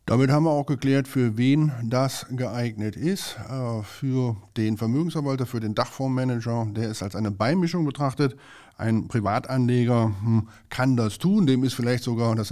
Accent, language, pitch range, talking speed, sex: German, German, 105-135 Hz, 155 wpm, male